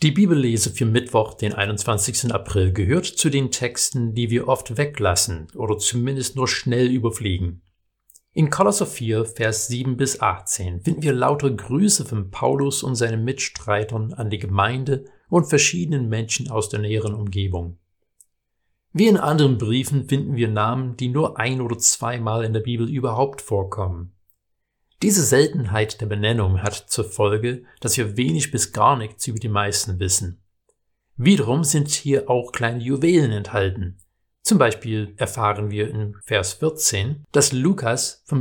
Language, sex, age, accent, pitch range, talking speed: German, male, 50-69, German, 105-135 Hz, 150 wpm